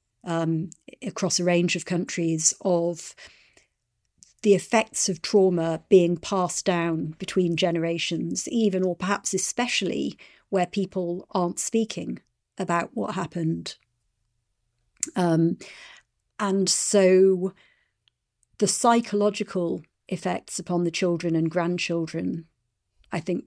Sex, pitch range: female, 165-200 Hz